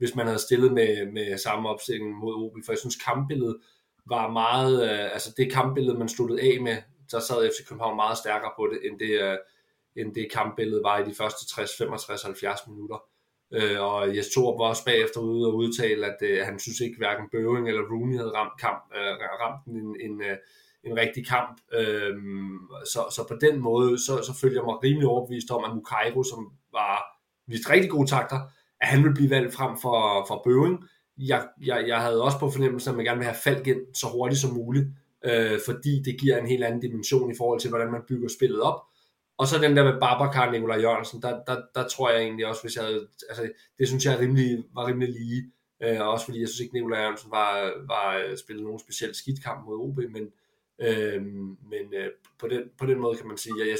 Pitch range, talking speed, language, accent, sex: 110-130 Hz, 220 wpm, Danish, native, male